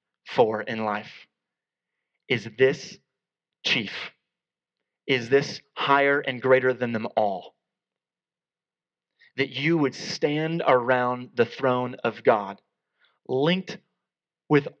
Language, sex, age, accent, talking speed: English, male, 30-49, American, 100 wpm